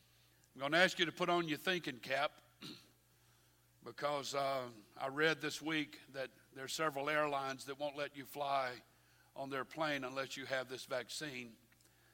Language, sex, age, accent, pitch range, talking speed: English, male, 50-69, American, 120-145 Hz, 170 wpm